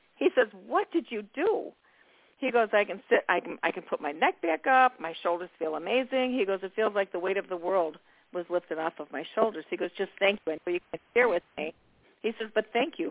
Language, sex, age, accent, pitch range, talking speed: English, female, 50-69, American, 170-225 Hz, 255 wpm